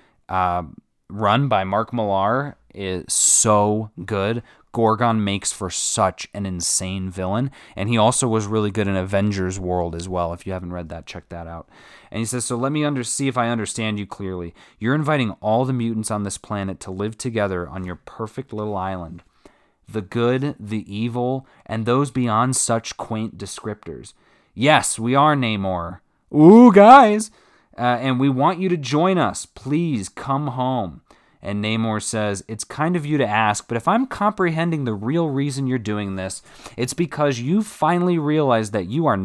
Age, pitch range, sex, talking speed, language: 20-39, 100-140 Hz, male, 180 wpm, English